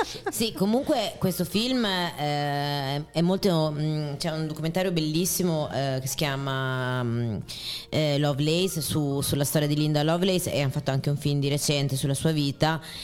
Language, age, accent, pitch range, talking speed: Italian, 30-49, native, 140-170 Hz, 150 wpm